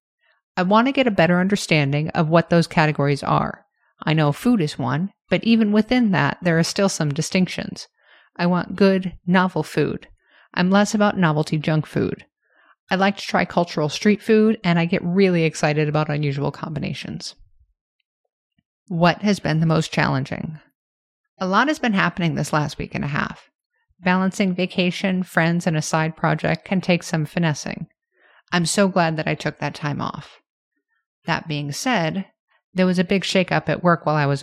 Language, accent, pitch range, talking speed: English, American, 155-195 Hz, 180 wpm